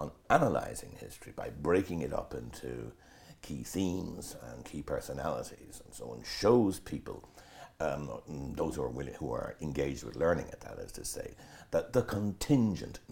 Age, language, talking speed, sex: 60-79, English, 155 wpm, male